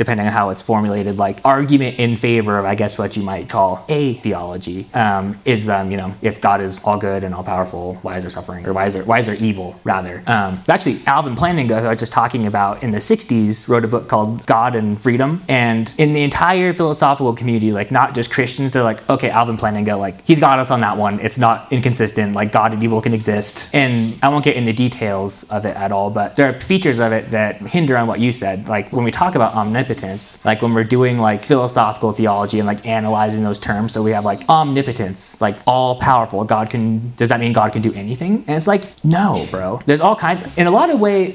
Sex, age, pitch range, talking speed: male, 20-39, 105-135 Hz, 240 wpm